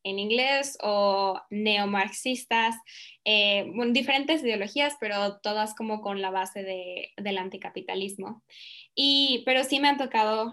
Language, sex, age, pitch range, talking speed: Spanish, female, 10-29, 200-240 Hz, 130 wpm